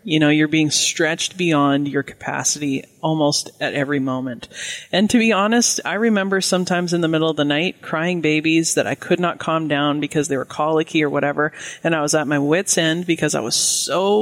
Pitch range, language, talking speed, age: 155-205 Hz, English, 210 wpm, 20-39